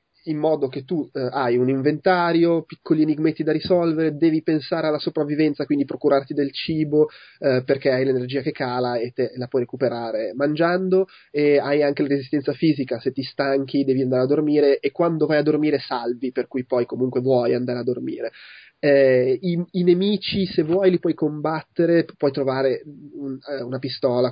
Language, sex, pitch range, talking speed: Italian, male, 135-160 Hz, 180 wpm